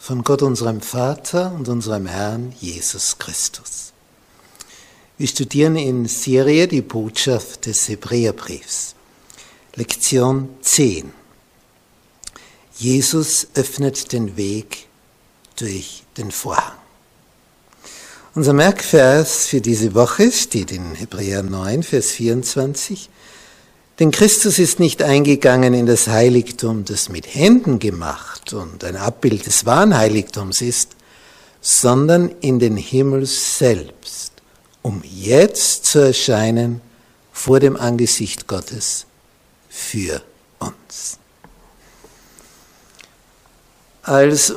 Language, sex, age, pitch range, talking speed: German, male, 60-79, 115-150 Hz, 95 wpm